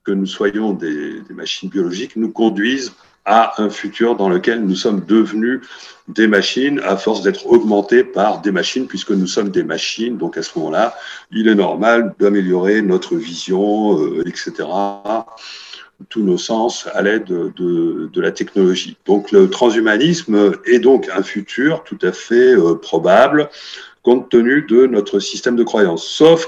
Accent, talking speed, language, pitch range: French, 165 wpm, French, 100-165 Hz